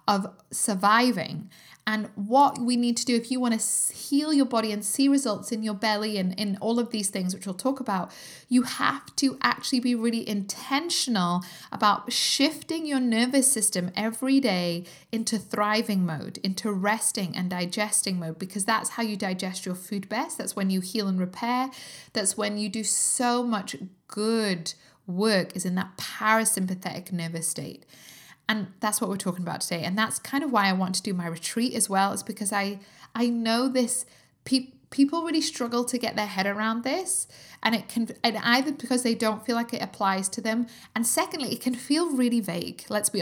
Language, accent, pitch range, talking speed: English, British, 195-245 Hz, 195 wpm